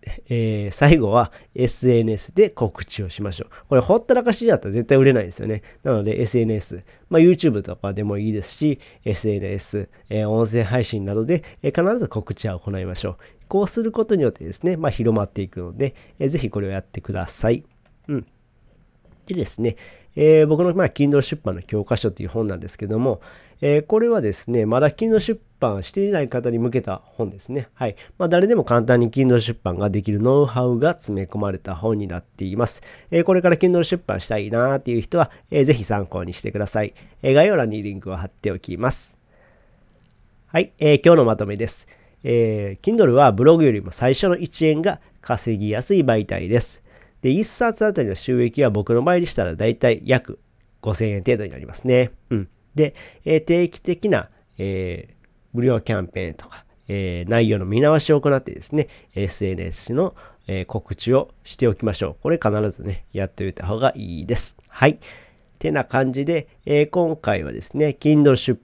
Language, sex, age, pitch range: Japanese, male, 40-59, 100-145 Hz